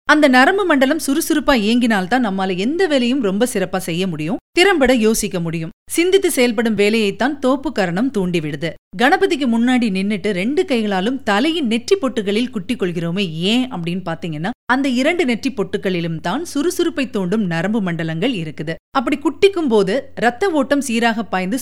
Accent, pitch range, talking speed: native, 195-275 Hz, 140 wpm